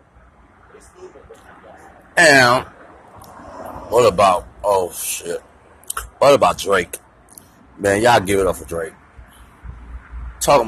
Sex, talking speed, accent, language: male, 90 wpm, American, English